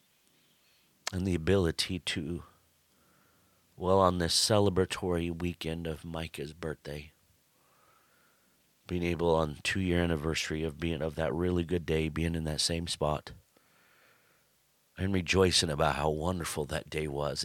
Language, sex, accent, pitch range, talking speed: English, male, American, 80-90 Hz, 125 wpm